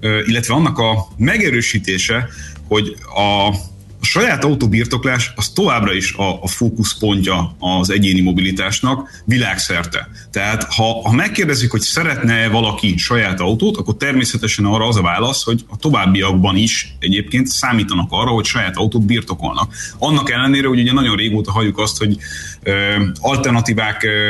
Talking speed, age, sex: 140 wpm, 30-49, male